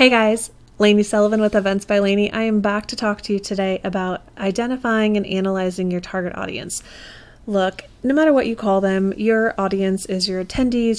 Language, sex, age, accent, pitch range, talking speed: English, female, 30-49, American, 195-230 Hz, 190 wpm